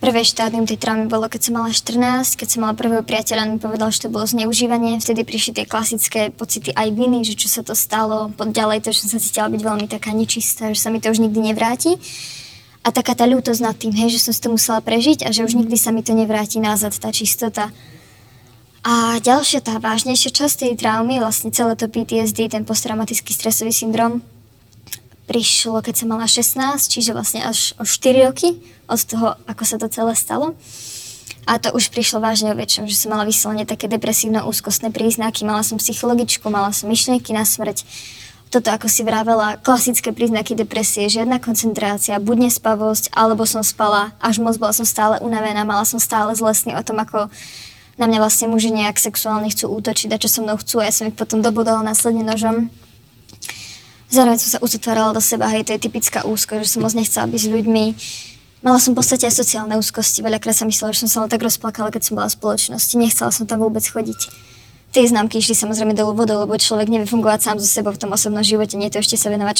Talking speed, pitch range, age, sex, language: 210 wpm, 215-230 Hz, 20-39, male, Slovak